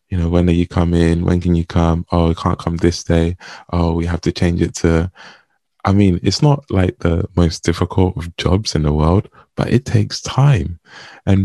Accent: British